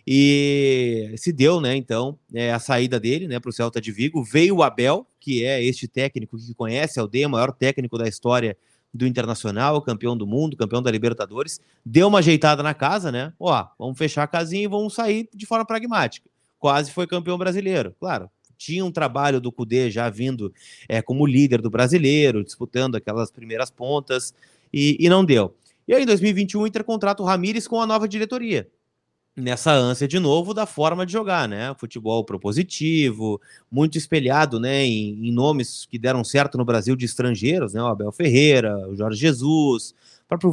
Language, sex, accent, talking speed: Portuguese, male, Brazilian, 185 wpm